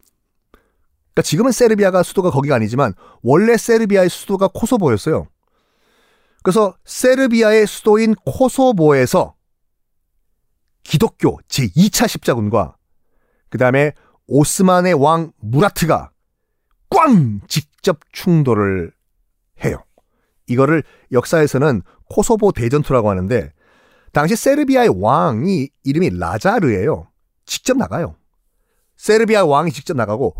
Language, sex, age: Korean, male, 40-59